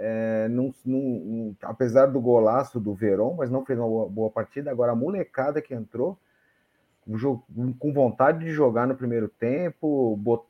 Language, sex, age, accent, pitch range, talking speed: Portuguese, male, 30-49, Brazilian, 110-140 Hz, 175 wpm